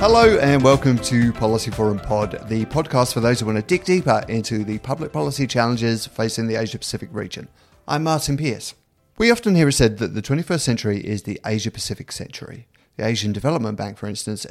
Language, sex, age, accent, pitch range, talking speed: English, male, 30-49, British, 105-135 Hz, 195 wpm